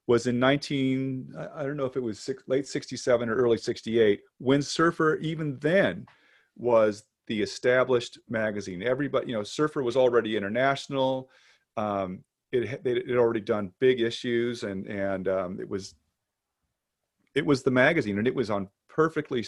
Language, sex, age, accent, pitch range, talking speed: English, male, 40-59, American, 110-135 Hz, 160 wpm